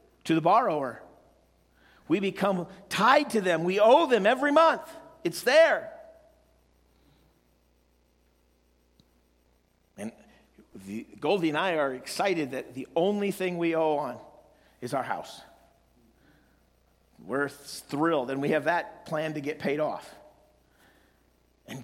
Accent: American